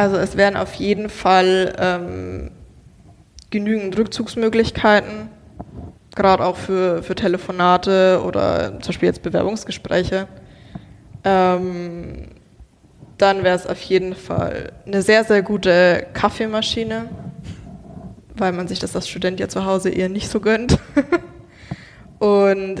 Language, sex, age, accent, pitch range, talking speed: German, female, 20-39, German, 180-205 Hz, 120 wpm